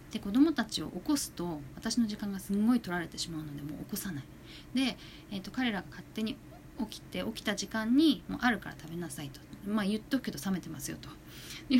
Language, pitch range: Japanese, 155-235 Hz